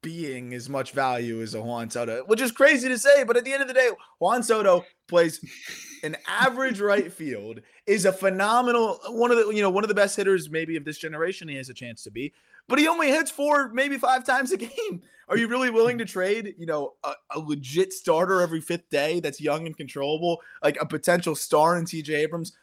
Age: 20-39